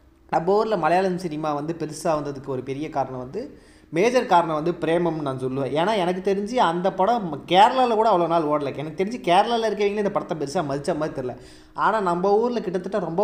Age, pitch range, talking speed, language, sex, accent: 20-39, 155-205 Hz, 190 wpm, Tamil, male, native